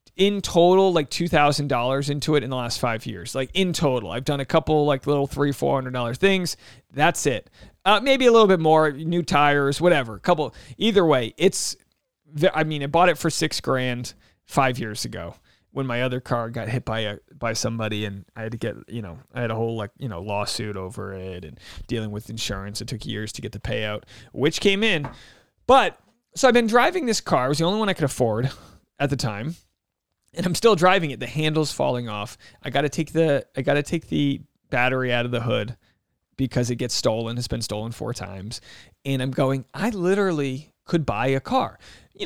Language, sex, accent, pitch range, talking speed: English, male, American, 120-180 Hz, 215 wpm